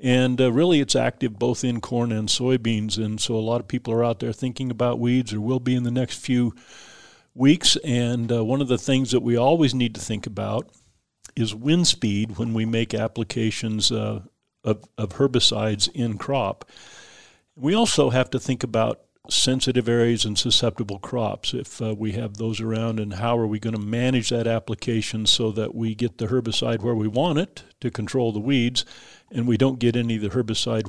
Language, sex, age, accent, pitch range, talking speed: English, male, 50-69, American, 110-125 Hz, 200 wpm